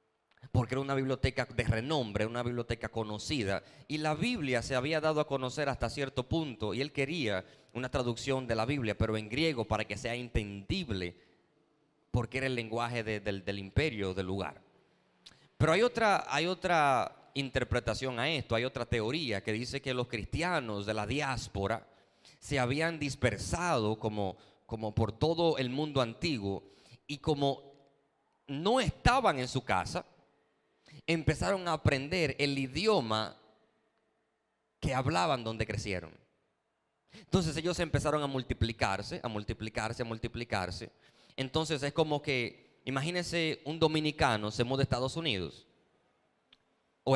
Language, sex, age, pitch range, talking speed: Spanish, male, 30-49, 110-145 Hz, 140 wpm